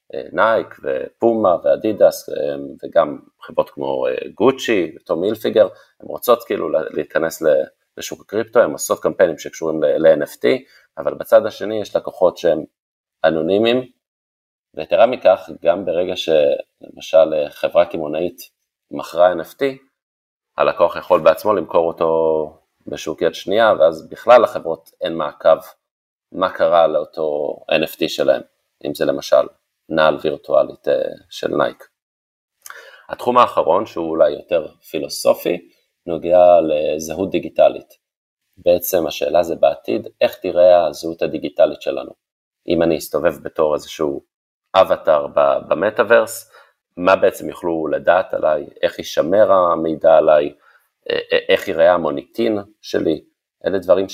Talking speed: 110 wpm